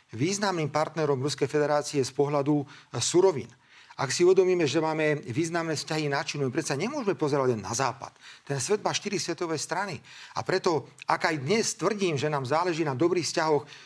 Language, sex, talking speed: Slovak, male, 180 wpm